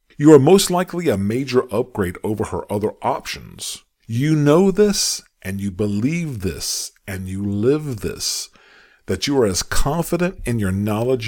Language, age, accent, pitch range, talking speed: English, 50-69, American, 95-130 Hz, 160 wpm